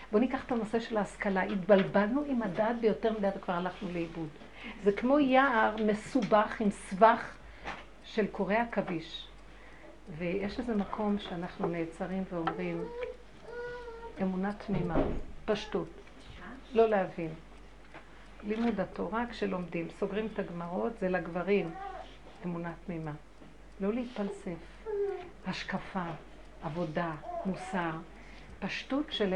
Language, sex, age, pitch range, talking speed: Hebrew, female, 50-69, 185-230 Hz, 105 wpm